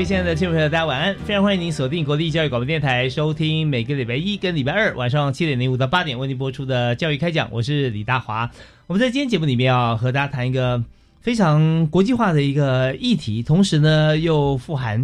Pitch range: 125-170 Hz